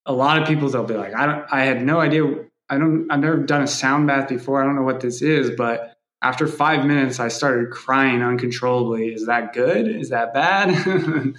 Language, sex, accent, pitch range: English, male, American, 115-135 Hz